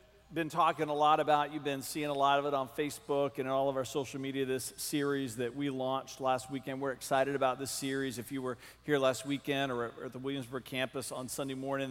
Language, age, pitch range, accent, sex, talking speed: English, 40-59, 130-150 Hz, American, male, 235 wpm